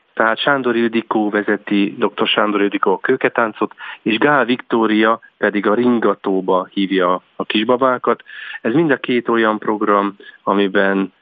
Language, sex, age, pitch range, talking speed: Hungarian, male, 40-59, 100-115 Hz, 135 wpm